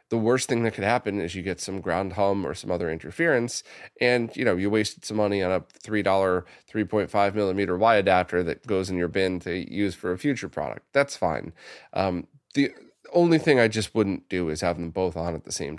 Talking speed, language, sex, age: 230 wpm, English, male, 20-39